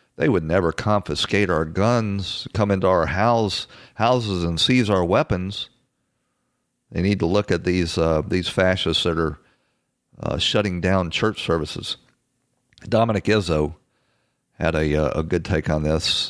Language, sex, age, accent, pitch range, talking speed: English, male, 50-69, American, 85-110 Hz, 145 wpm